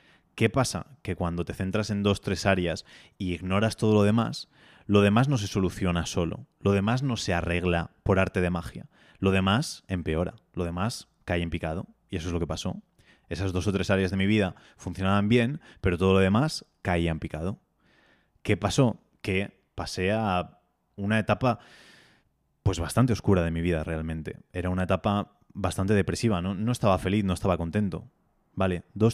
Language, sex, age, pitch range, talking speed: Spanish, male, 20-39, 90-110 Hz, 180 wpm